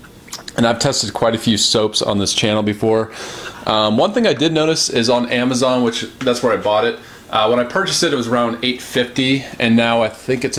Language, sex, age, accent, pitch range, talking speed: English, male, 30-49, American, 110-125 Hz, 225 wpm